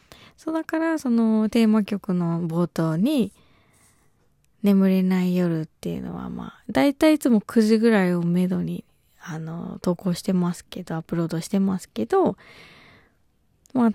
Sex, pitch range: female, 170-220 Hz